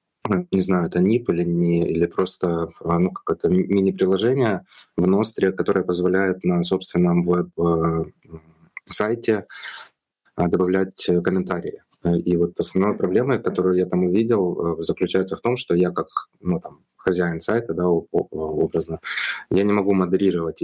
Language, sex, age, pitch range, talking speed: Russian, male, 20-39, 85-95 Hz, 125 wpm